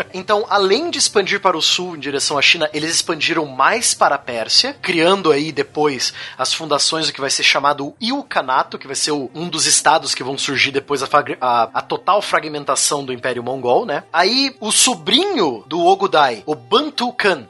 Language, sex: Portuguese, male